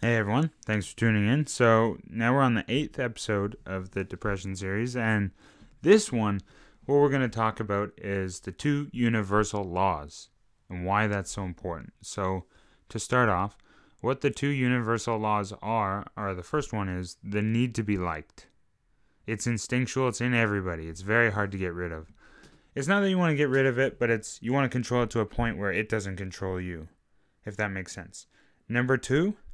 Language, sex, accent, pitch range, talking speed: English, male, American, 100-125 Hz, 200 wpm